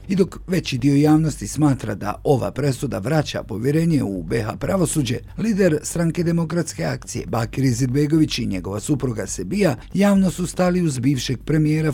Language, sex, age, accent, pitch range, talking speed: Croatian, male, 50-69, native, 120-160 Hz, 150 wpm